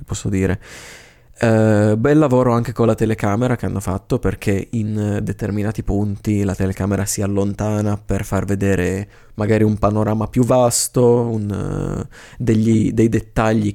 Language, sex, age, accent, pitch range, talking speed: Italian, male, 20-39, native, 100-115 Hz, 125 wpm